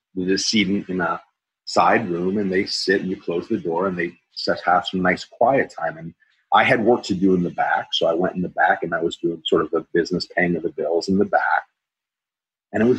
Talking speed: 255 wpm